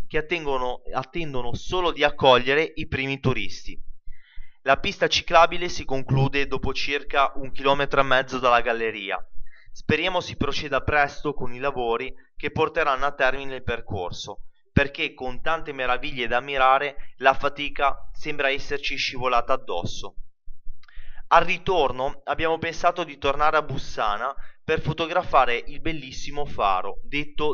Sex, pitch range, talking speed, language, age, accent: male, 120-155 Hz, 130 wpm, Italian, 20-39, native